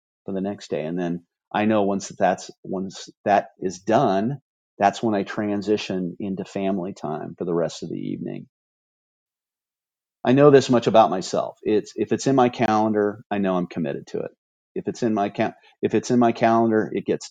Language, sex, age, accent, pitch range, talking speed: English, male, 40-59, American, 90-115 Hz, 200 wpm